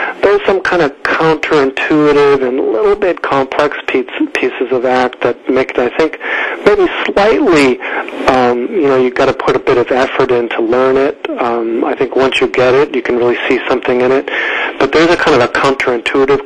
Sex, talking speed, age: male, 205 wpm, 50-69